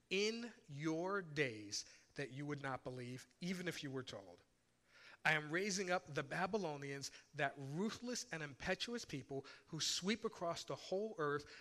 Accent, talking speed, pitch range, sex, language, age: American, 155 wpm, 135-185 Hz, male, English, 40-59